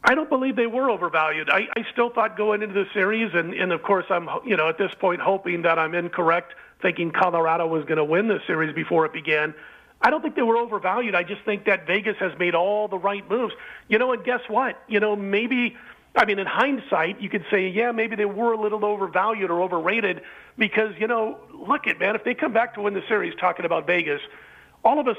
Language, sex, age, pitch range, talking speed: English, male, 40-59, 180-220 Hz, 240 wpm